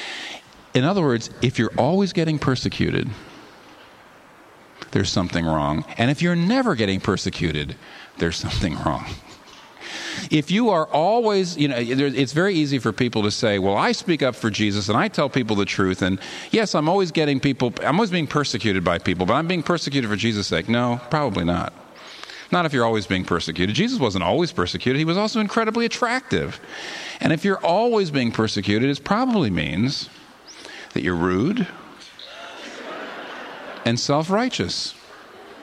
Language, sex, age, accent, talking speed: English, male, 50-69, American, 165 wpm